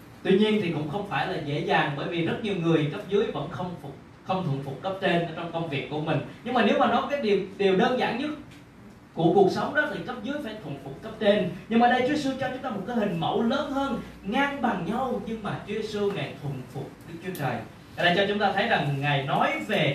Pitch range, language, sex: 150-240 Hz, Vietnamese, male